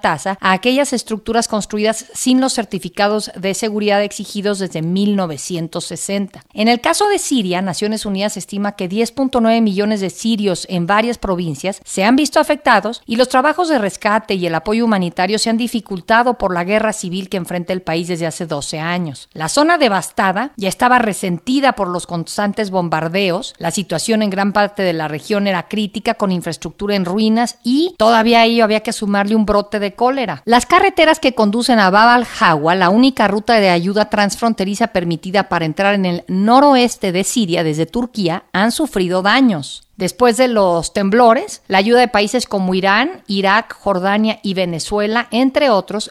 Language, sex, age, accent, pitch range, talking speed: Spanish, female, 50-69, Mexican, 185-235 Hz, 175 wpm